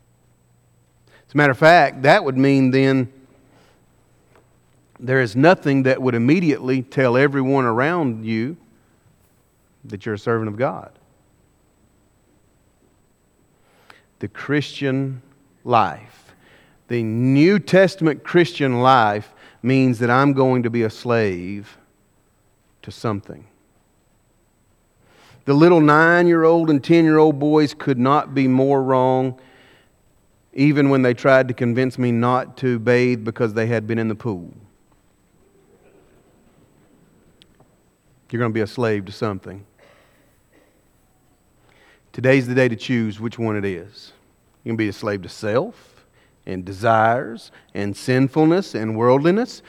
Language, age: English, 40-59